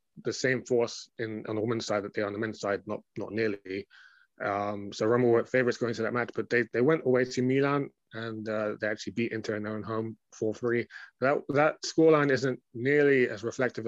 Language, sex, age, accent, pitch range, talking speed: English, male, 20-39, British, 105-125 Hz, 225 wpm